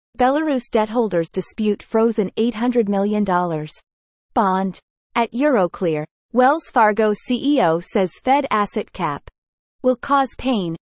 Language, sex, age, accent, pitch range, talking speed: English, female, 30-49, American, 180-255 Hz, 110 wpm